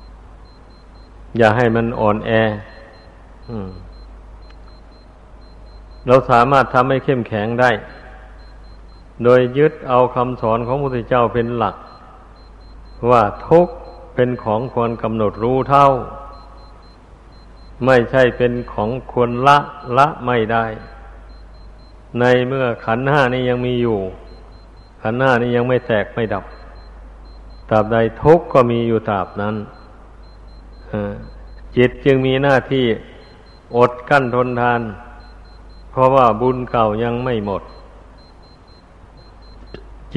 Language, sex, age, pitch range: Thai, male, 60-79, 100-125 Hz